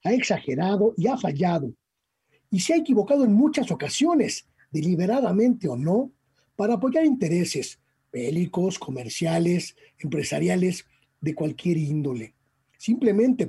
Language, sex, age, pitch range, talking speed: Spanish, male, 40-59, 155-210 Hz, 110 wpm